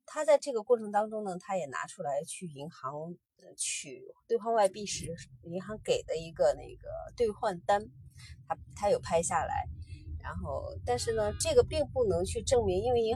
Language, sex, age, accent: Chinese, female, 20-39, native